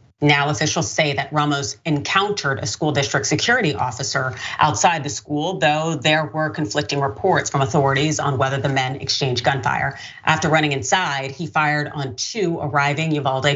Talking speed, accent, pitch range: 160 wpm, American, 135-160 Hz